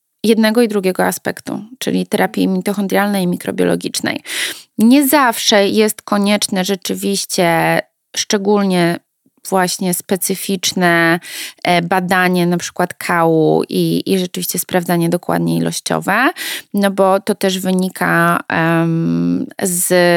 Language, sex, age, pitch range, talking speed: Polish, female, 20-39, 170-200 Hz, 100 wpm